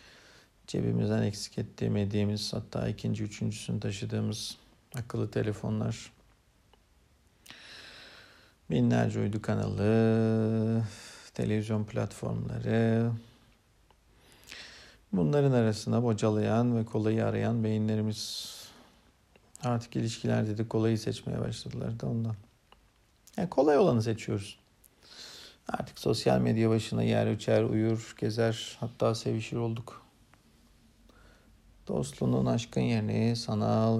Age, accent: 50-69, native